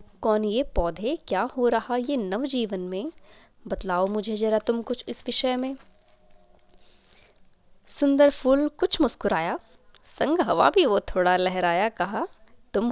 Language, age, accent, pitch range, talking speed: Hindi, 20-39, native, 195-265 Hz, 135 wpm